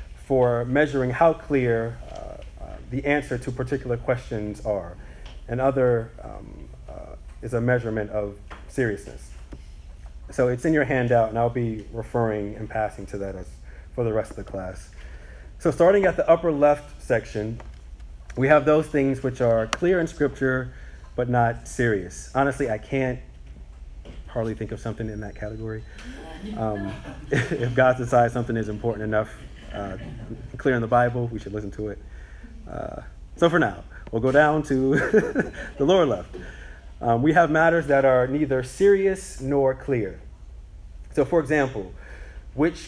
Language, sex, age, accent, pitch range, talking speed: English, male, 30-49, American, 95-135 Hz, 155 wpm